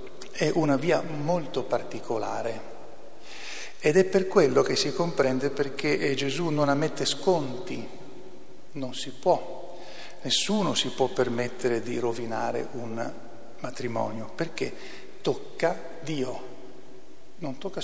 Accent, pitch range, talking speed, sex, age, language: native, 125-165 Hz, 110 wpm, male, 50-69, Italian